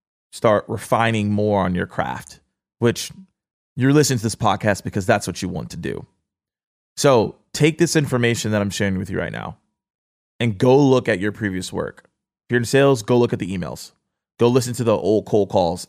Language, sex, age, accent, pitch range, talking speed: English, male, 20-39, American, 95-120 Hz, 200 wpm